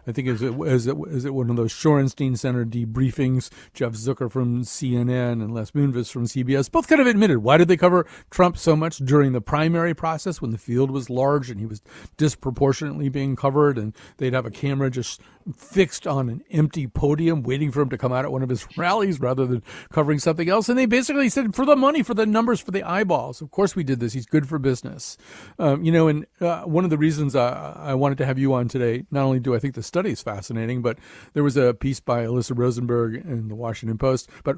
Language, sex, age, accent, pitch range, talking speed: English, male, 50-69, American, 120-155 Hz, 240 wpm